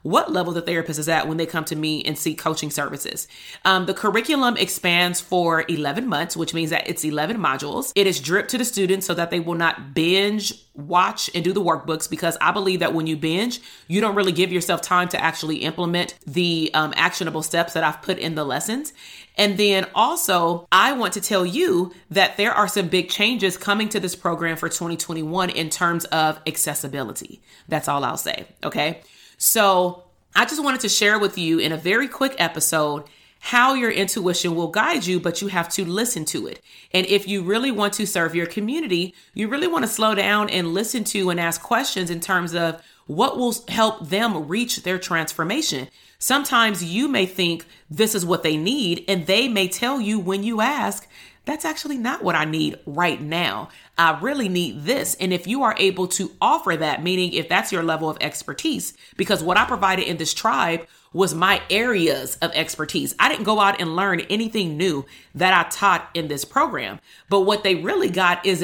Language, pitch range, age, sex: English, 165-205 Hz, 30-49, female